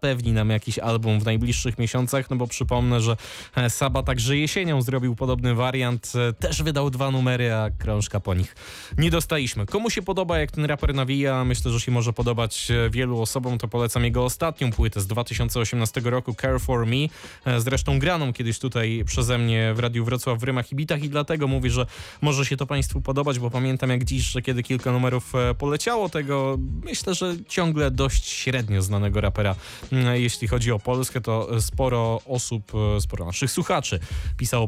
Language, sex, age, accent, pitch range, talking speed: Polish, male, 20-39, native, 105-130 Hz, 175 wpm